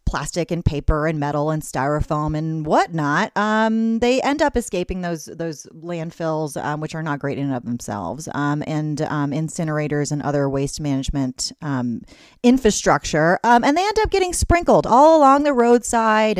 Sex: female